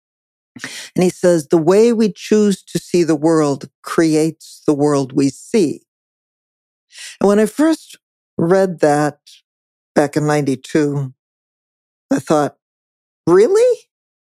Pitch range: 155-205 Hz